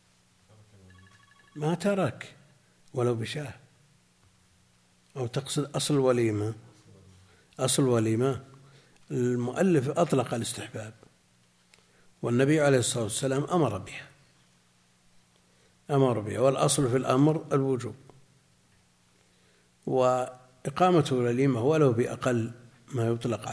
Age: 60-79